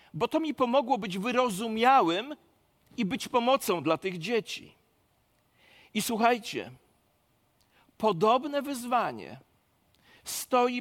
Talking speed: 95 wpm